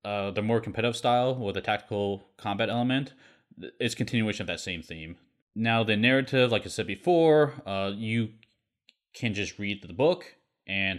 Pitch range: 100-120 Hz